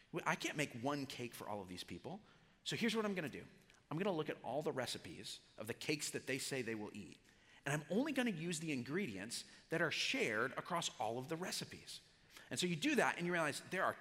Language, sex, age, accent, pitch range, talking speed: English, male, 30-49, American, 150-210 Hz, 255 wpm